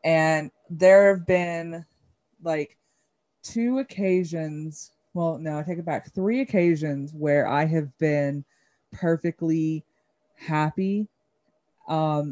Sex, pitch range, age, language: female, 145-175 Hz, 20-39, English